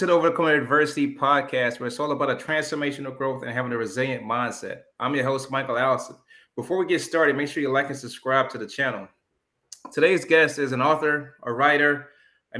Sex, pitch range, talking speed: male, 125-145 Hz, 205 wpm